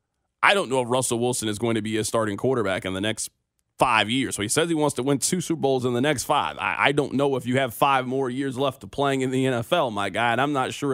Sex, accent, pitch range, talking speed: male, American, 115-150 Hz, 295 wpm